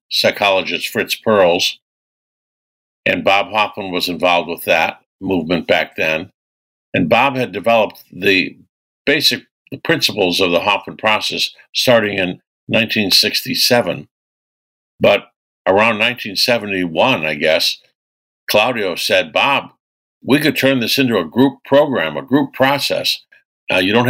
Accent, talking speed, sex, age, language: American, 120 wpm, male, 60-79, English